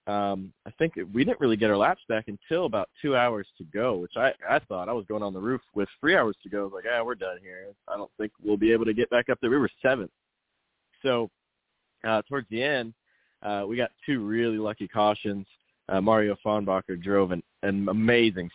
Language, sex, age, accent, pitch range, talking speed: English, male, 20-39, American, 100-120 Hz, 230 wpm